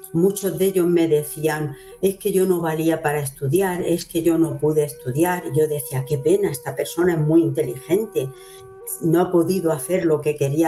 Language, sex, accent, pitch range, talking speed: Spanish, female, Spanish, 160-195 Hz, 195 wpm